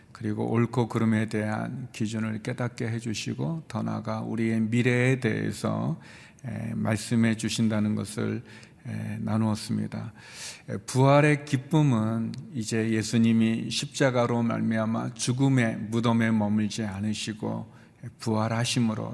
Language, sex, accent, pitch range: Korean, male, native, 110-120 Hz